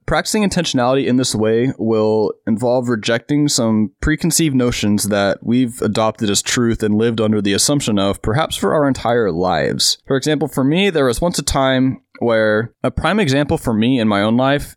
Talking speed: 185 wpm